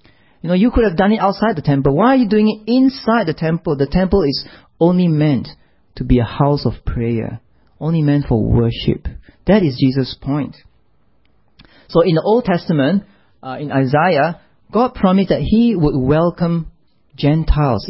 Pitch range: 125-175 Hz